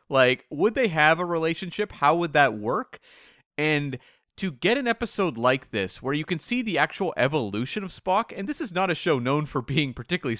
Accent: American